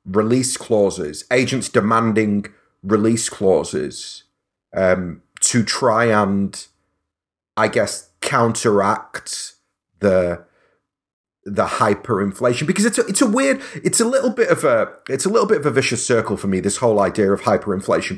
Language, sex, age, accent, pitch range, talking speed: English, male, 30-49, British, 115-180 Hz, 140 wpm